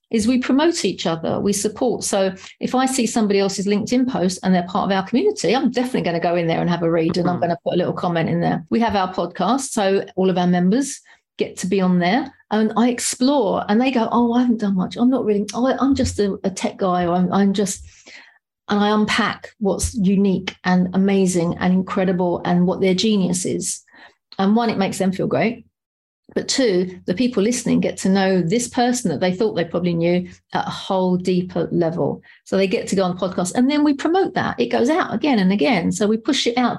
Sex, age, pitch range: female, 40-59, 180-235 Hz